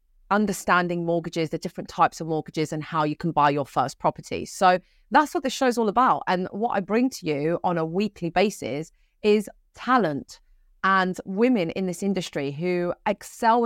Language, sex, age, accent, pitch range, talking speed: English, female, 30-49, British, 160-205 Hz, 185 wpm